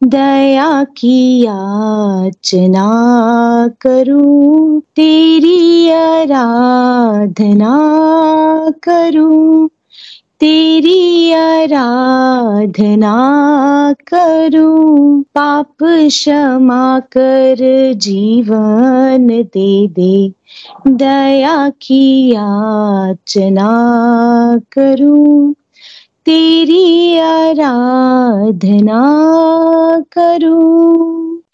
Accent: native